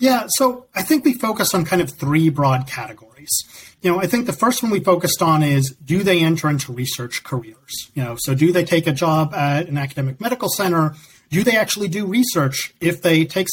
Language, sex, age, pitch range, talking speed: English, male, 40-59, 140-185 Hz, 220 wpm